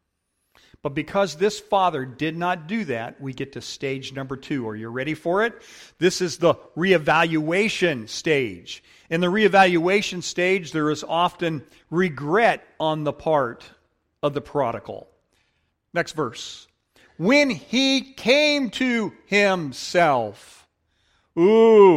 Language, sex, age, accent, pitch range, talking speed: English, male, 50-69, American, 135-210 Hz, 125 wpm